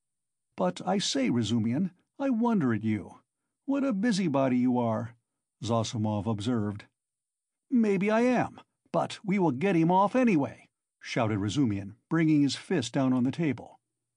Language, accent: English, American